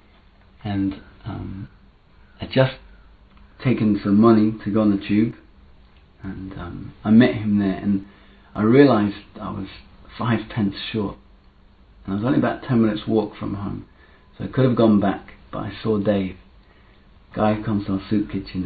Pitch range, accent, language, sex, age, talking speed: 95-110 Hz, British, English, male, 40-59, 170 wpm